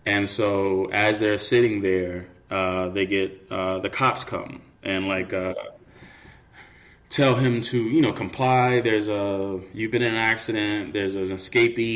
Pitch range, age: 95-115 Hz, 20-39